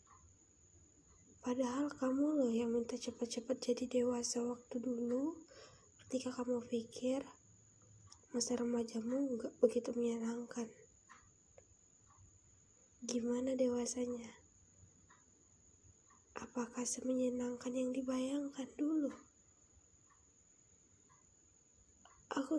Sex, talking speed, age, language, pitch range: female, 70 wpm, 20-39, Indonesian, 230-260 Hz